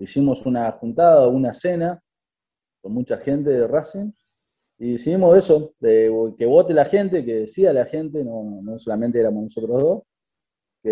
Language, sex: Spanish, male